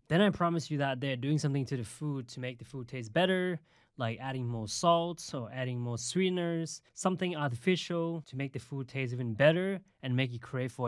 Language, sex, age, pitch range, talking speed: English, male, 20-39, 120-145 Hz, 215 wpm